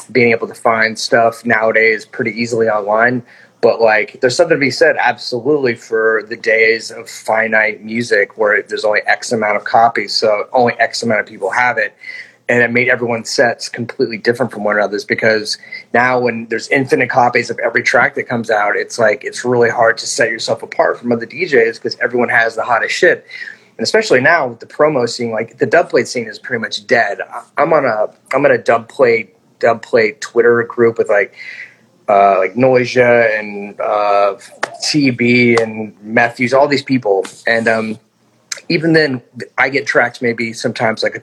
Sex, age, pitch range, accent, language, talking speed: male, 30-49, 110-130 Hz, American, English, 185 wpm